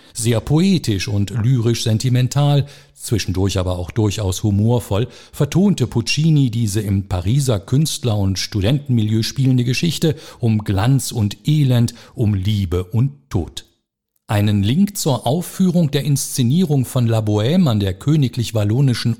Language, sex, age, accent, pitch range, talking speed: German, male, 50-69, German, 105-140 Hz, 120 wpm